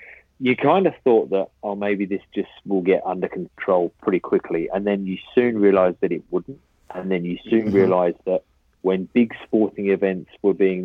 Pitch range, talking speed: 95-110 Hz, 195 wpm